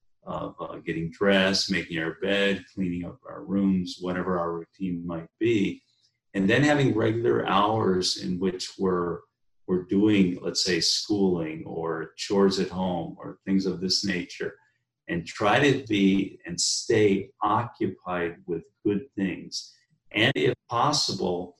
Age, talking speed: 40-59, 140 wpm